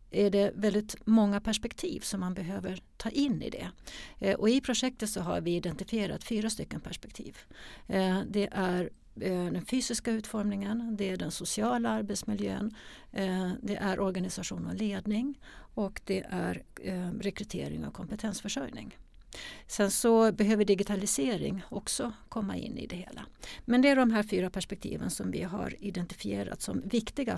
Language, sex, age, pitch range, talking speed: Swedish, female, 60-79, 190-220 Hz, 145 wpm